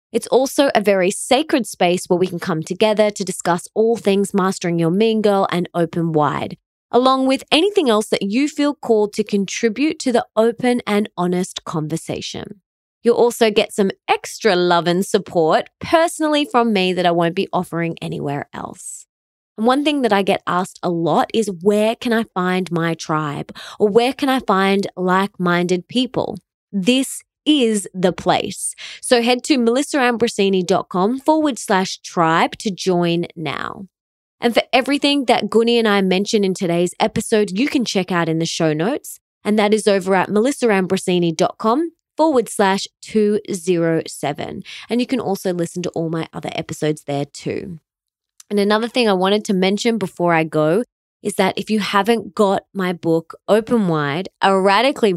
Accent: Australian